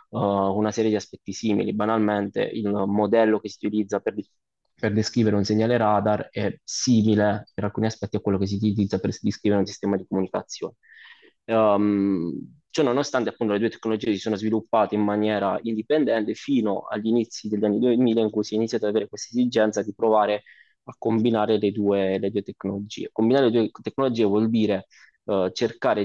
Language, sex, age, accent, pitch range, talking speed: Italian, male, 20-39, native, 100-110 Hz, 175 wpm